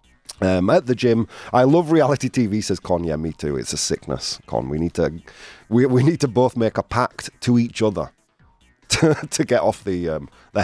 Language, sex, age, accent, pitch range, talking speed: English, male, 30-49, British, 110-150 Hz, 215 wpm